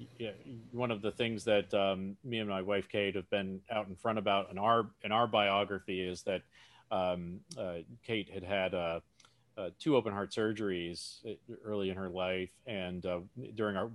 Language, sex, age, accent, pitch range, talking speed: English, male, 40-59, American, 95-115 Hz, 180 wpm